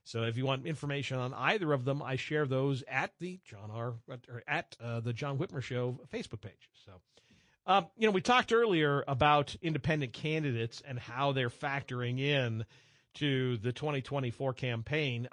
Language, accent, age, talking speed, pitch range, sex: English, American, 50-69, 170 wpm, 125-155 Hz, male